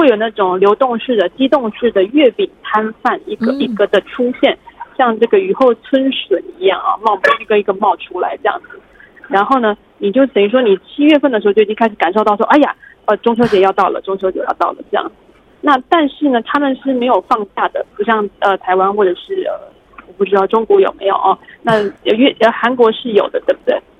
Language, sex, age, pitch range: Korean, female, 20-39, 205-265 Hz